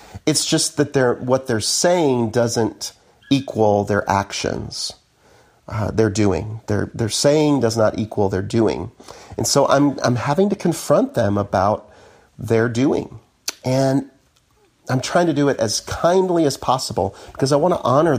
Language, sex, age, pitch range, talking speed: English, male, 40-59, 105-135 Hz, 160 wpm